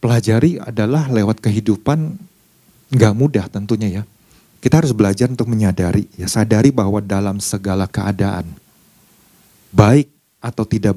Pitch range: 105-130 Hz